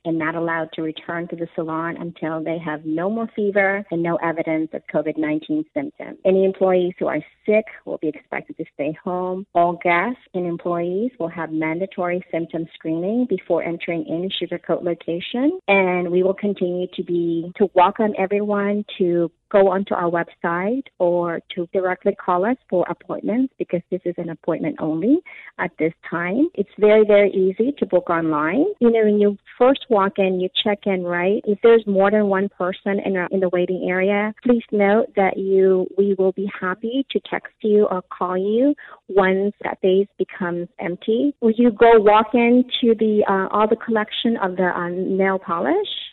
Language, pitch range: English, 175-215 Hz